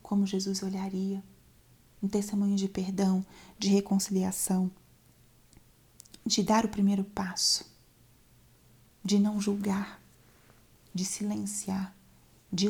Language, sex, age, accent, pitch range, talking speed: Portuguese, female, 30-49, Brazilian, 185-205 Hz, 95 wpm